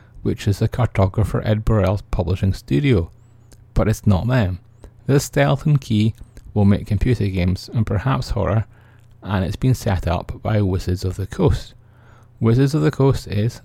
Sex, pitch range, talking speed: male, 100-120 Hz, 165 wpm